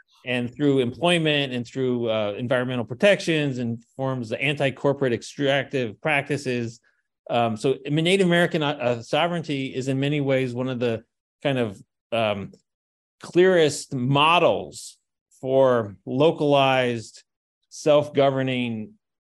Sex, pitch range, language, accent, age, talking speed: male, 115-145 Hz, English, American, 40-59, 110 wpm